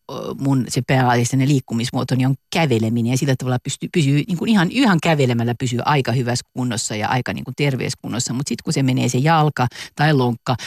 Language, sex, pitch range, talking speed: Finnish, female, 125-155 Hz, 195 wpm